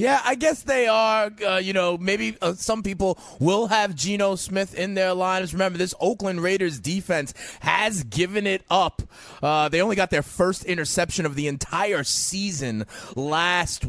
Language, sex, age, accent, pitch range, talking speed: English, male, 30-49, American, 155-190 Hz, 175 wpm